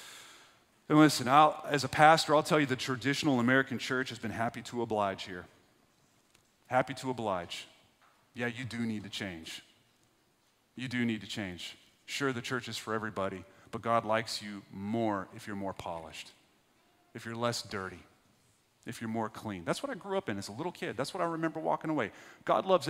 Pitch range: 115-180 Hz